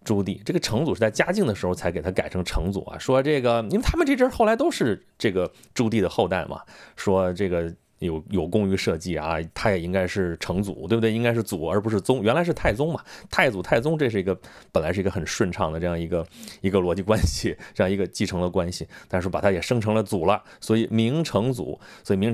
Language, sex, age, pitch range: Chinese, male, 30-49, 95-125 Hz